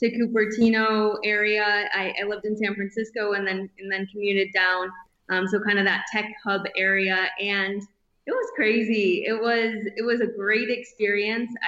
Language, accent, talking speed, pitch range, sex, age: English, American, 175 wpm, 200-220 Hz, female, 20-39